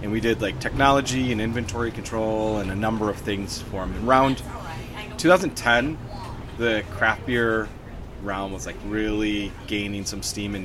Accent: American